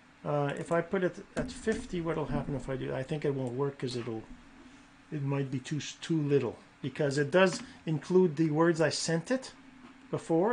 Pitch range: 150-250 Hz